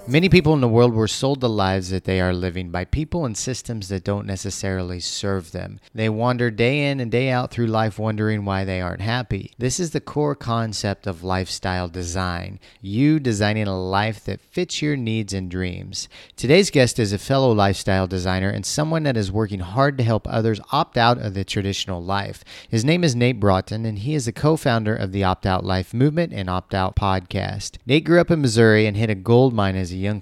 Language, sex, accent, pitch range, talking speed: English, male, American, 95-125 Hz, 215 wpm